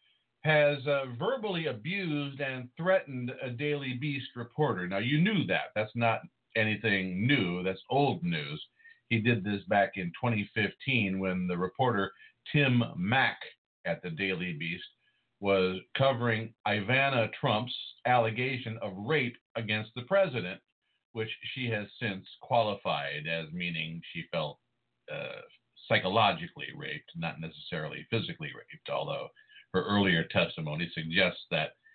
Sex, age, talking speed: male, 50-69, 125 wpm